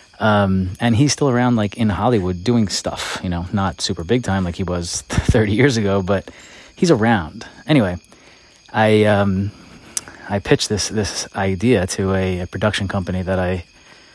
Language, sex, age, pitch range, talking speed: English, male, 20-39, 95-105 Hz, 170 wpm